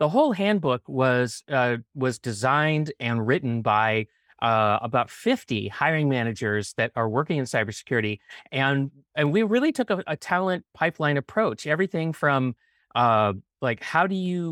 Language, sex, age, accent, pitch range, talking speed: English, male, 30-49, American, 120-165 Hz, 155 wpm